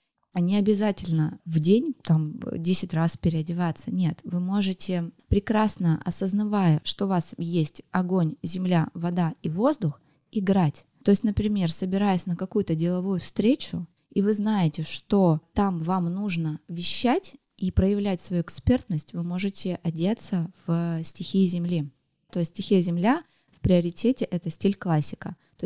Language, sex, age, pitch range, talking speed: Russian, female, 20-39, 170-200 Hz, 145 wpm